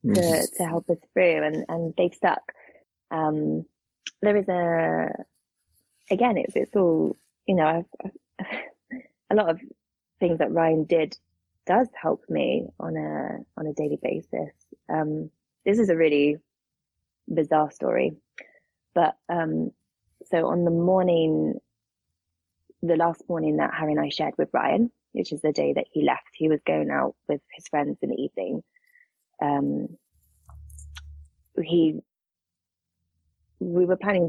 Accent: British